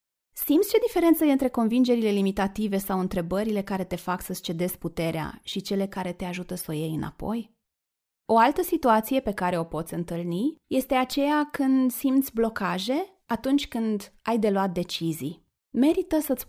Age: 20-39